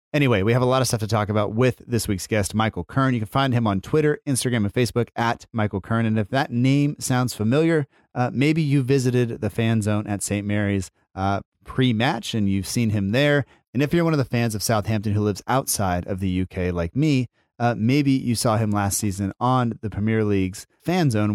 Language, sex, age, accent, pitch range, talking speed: English, male, 30-49, American, 105-135 Hz, 230 wpm